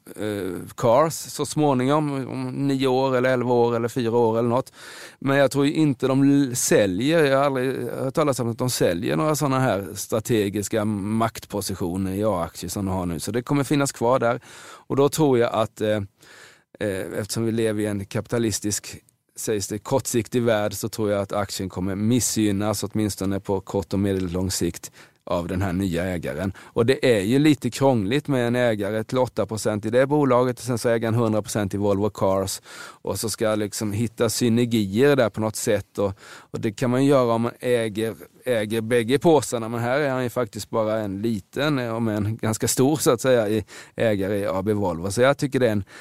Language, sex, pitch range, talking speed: Swedish, male, 100-125 Hz, 200 wpm